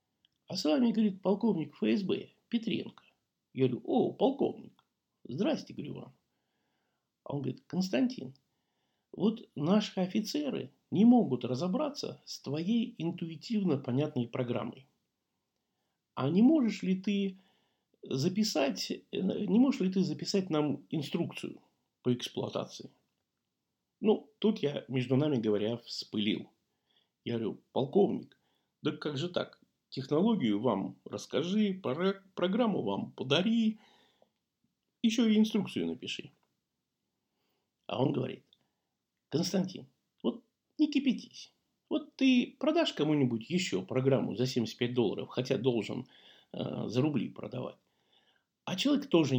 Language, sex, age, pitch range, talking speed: Russian, male, 50-69, 130-215 Hz, 115 wpm